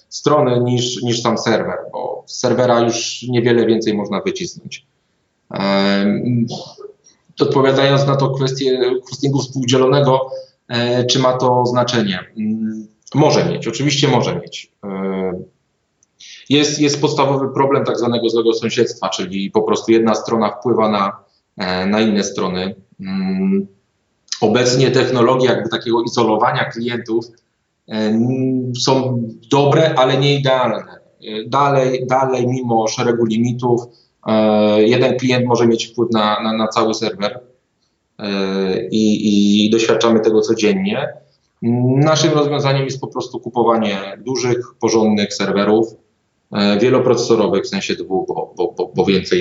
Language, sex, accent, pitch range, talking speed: Polish, male, native, 110-135 Hz, 115 wpm